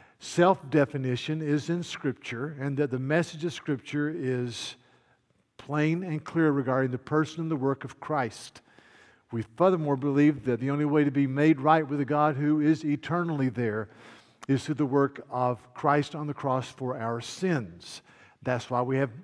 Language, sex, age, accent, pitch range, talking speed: English, male, 50-69, American, 130-165 Hz, 175 wpm